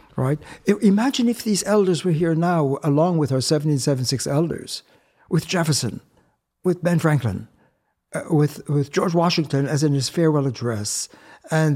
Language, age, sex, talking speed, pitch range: English, 60-79, male, 150 wpm, 145-180 Hz